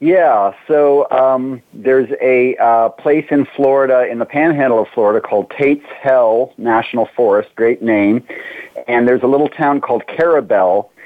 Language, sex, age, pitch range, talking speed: English, male, 40-59, 110-145 Hz, 150 wpm